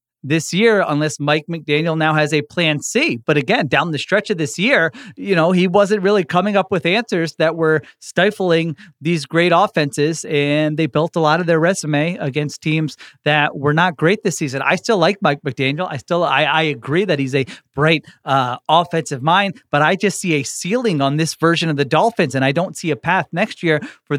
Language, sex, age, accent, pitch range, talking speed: English, male, 30-49, American, 150-185 Hz, 215 wpm